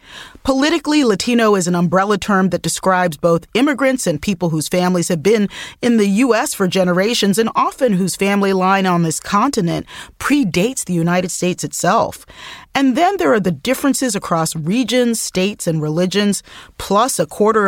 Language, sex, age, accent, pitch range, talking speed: English, female, 40-59, American, 175-230 Hz, 165 wpm